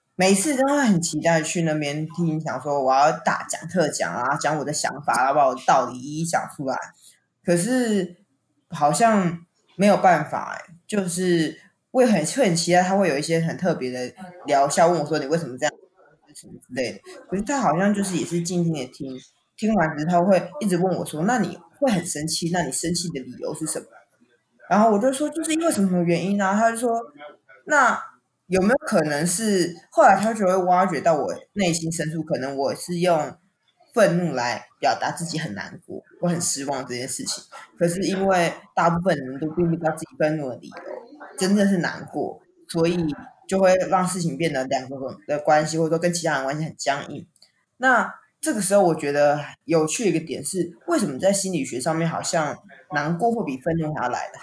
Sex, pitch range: female, 155-195 Hz